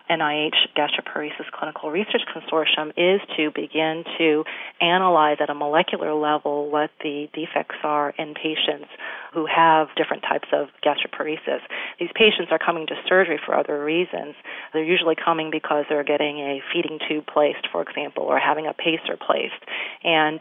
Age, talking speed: 40-59, 155 wpm